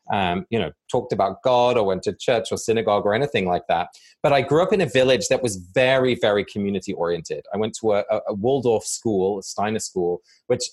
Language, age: English, 20-39